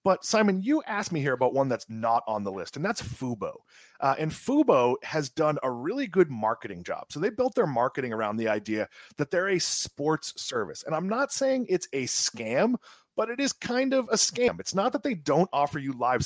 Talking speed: 225 wpm